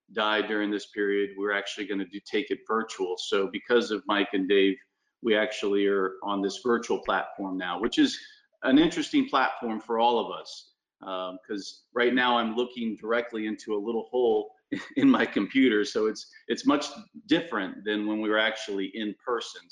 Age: 40-59